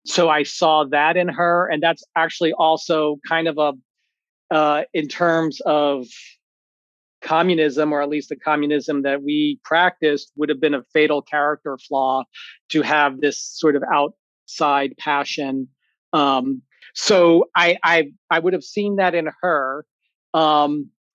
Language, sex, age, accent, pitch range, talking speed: English, male, 40-59, American, 150-170 Hz, 150 wpm